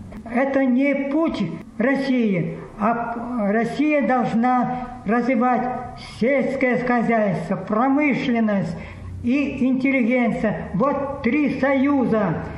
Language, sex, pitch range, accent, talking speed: Russian, female, 225-270 Hz, American, 75 wpm